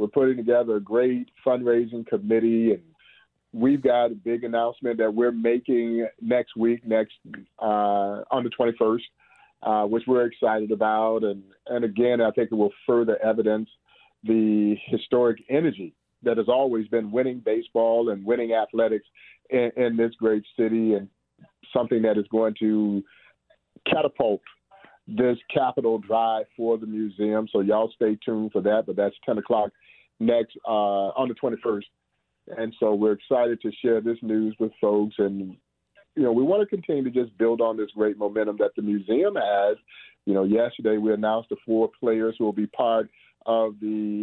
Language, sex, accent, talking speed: English, male, American, 170 wpm